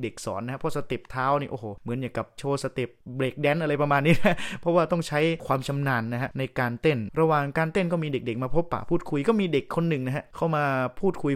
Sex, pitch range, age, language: male, 120-150 Hz, 20-39, Thai